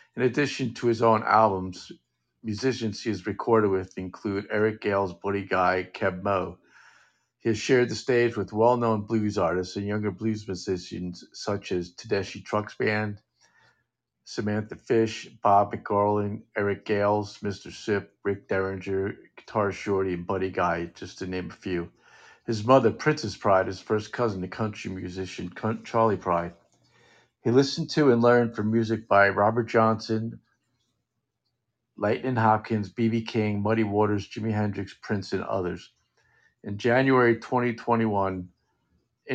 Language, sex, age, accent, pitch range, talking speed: English, male, 50-69, American, 95-115 Hz, 140 wpm